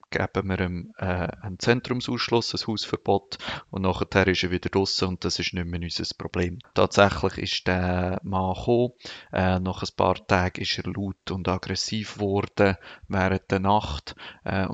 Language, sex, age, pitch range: German, male, 30-49, 95-105 Hz